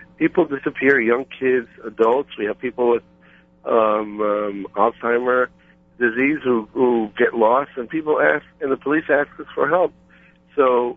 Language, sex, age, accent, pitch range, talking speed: English, male, 50-69, American, 95-125 Hz, 155 wpm